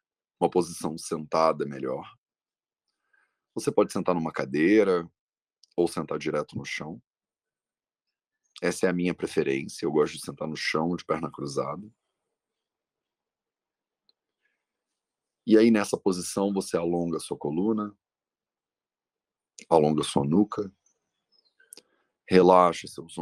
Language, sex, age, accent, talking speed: English, male, 40-59, Brazilian, 110 wpm